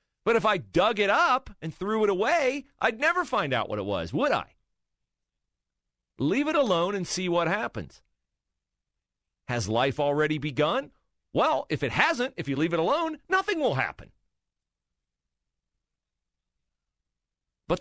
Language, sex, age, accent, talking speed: English, male, 40-59, American, 145 wpm